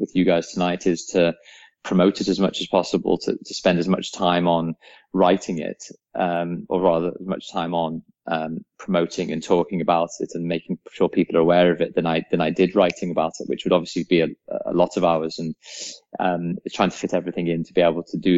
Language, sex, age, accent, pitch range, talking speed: English, male, 20-39, British, 85-90 Hz, 230 wpm